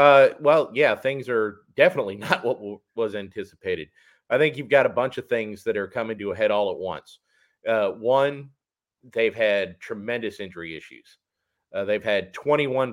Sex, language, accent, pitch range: male, English, American, 105-140 Hz